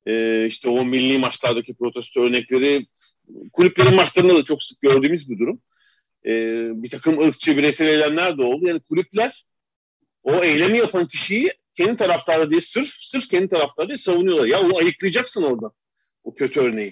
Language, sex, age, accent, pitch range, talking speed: Turkish, male, 40-59, native, 140-235 Hz, 155 wpm